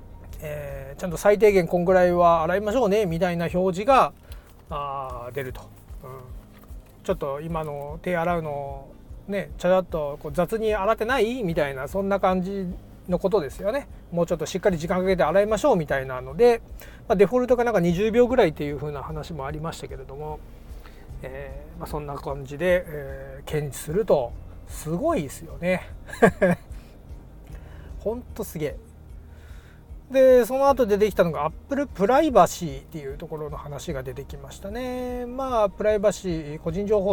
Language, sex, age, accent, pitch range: Japanese, male, 30-49, native, 140-200 Hz